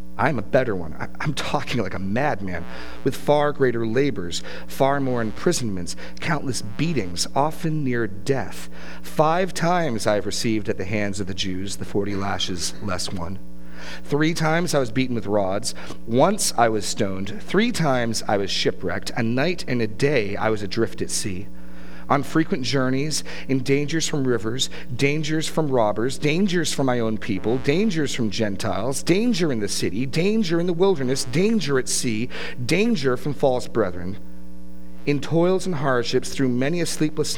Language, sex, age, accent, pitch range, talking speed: English, male, 40-59, American, 95-145 Hz, 165 wpm